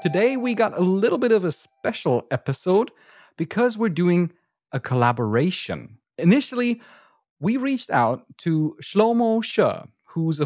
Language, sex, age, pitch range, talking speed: English, male, 30-49, 130-195 Hz, 140 wpm